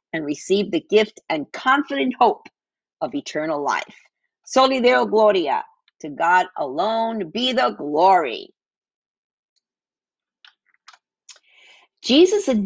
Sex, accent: female, American